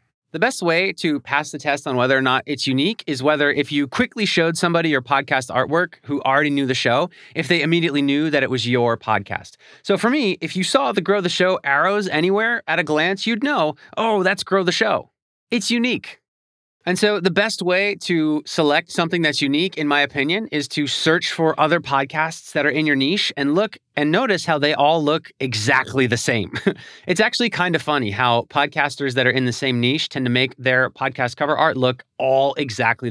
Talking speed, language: 215 wpm, English